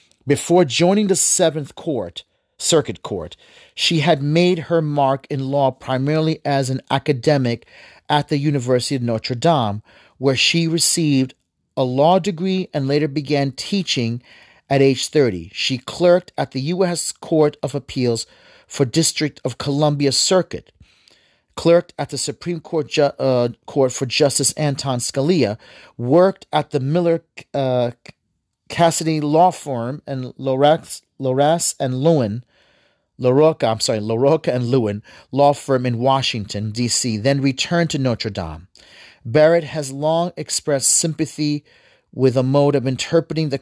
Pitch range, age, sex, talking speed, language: 130-160 Hz, 40-59, male, 140 wpm, English